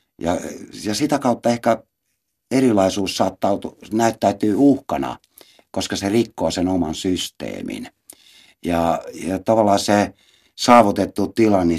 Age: 60-79